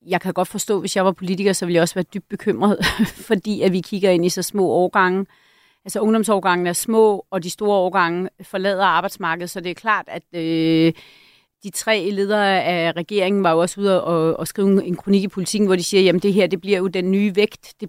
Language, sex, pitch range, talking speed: Danish, female, 175-210 Hz, 235 wpm